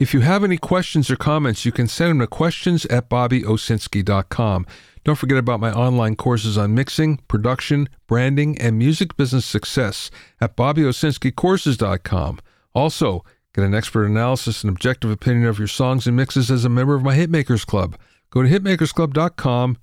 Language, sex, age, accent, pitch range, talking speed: English, male, 50-69, American, 105-145 Hz, 165 wpm